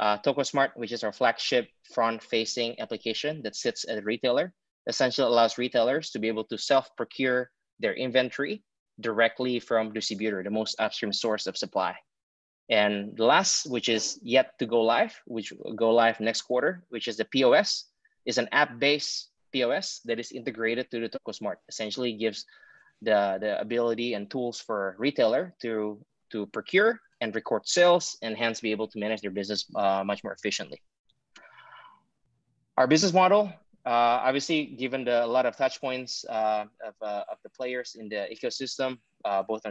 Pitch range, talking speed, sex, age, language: 110-130 Hz, 170 wpm, male, 20-39, Indonesian